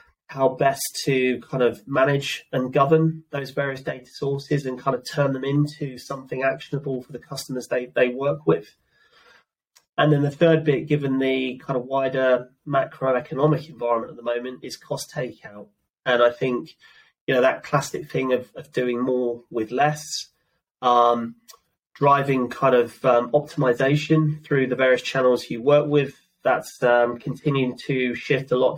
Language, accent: English, British